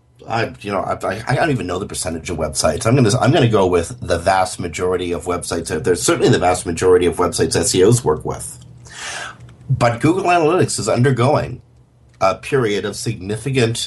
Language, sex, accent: English, male, American